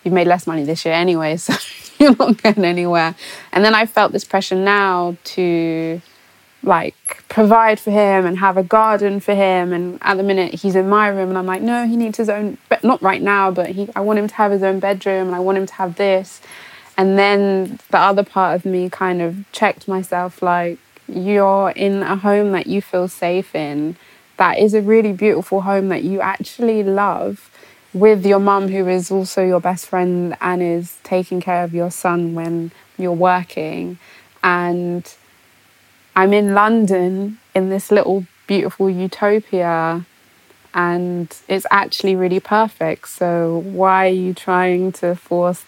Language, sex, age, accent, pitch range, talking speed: English, female, 20-39, British, 175-200 Hz, 180 wpm